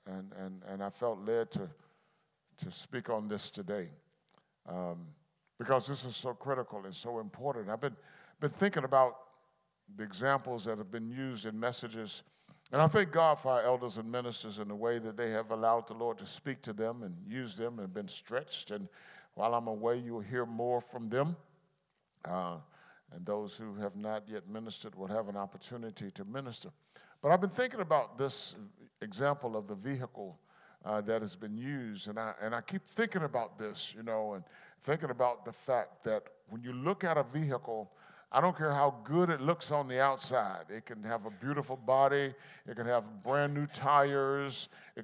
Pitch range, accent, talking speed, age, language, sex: 110-145 Hz, American, 195 wpm, 50-69, English, male